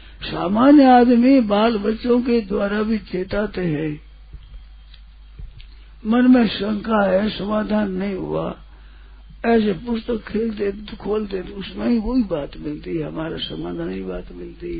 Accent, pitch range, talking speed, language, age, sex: native, 140-220 Hz, 125 wpm, Hindi, 60-79, male